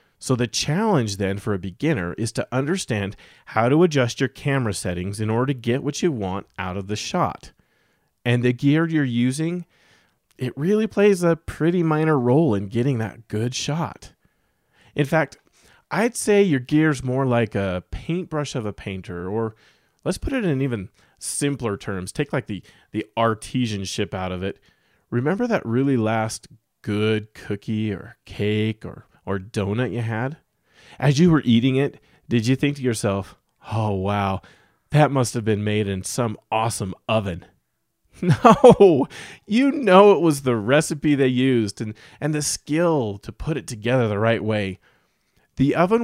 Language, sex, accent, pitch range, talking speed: English, male, American, 105-145 Hz, 170 wpm